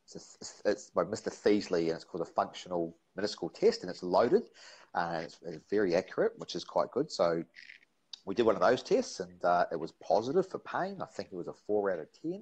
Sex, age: male, 40-59